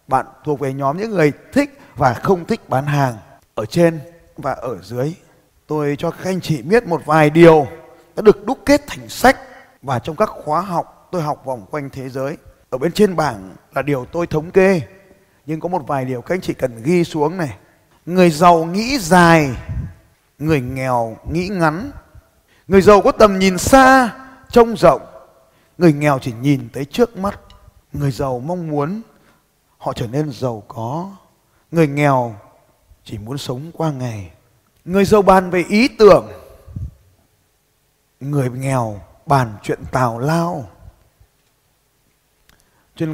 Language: Vietnamese